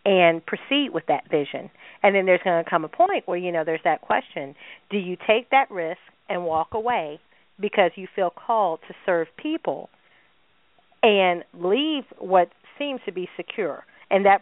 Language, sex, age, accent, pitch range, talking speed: English, female, 40-59, American, 175-230 Hz, 180 wpm